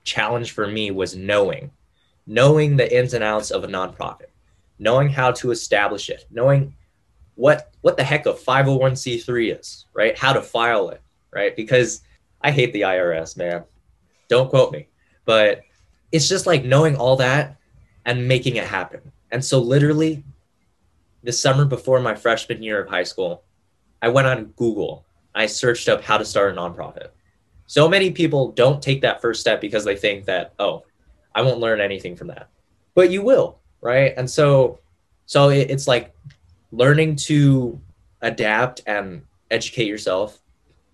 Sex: male